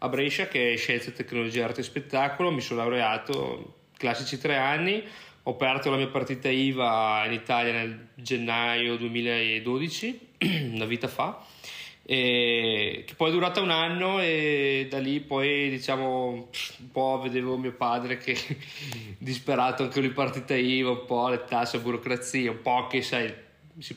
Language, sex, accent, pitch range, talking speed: Italian, male, native, 115-140 Hz, 160 wpm